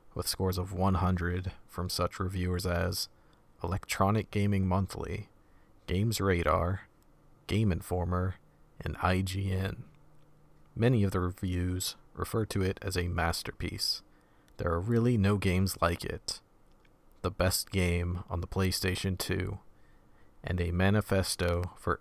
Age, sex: 40-59, male